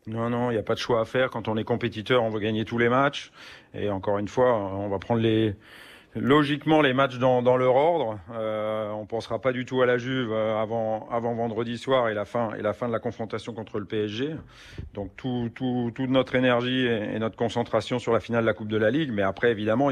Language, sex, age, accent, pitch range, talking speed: French, male, 40-59, French, 110-130 Hz, 230 wpm